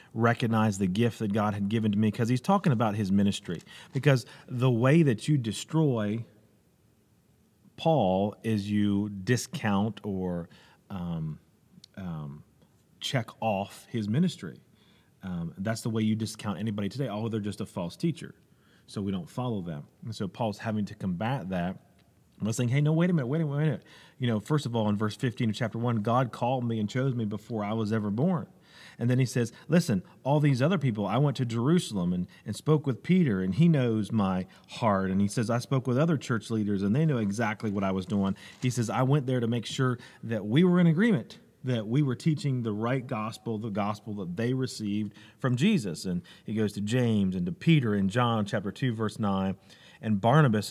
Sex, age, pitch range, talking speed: male, 40-59, 105-130 Hz, 210 wpm